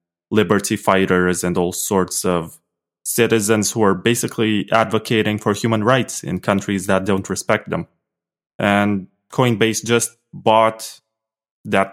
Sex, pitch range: male, 95-115 Hz